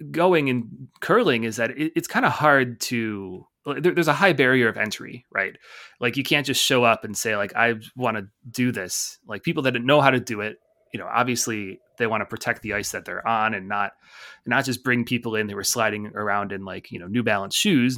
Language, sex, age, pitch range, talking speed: English, male, 20-39, 110-125 Hz, 235 wpm